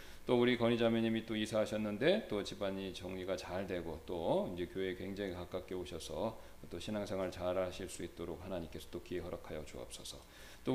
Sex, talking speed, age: male, 160 wpm, 40-59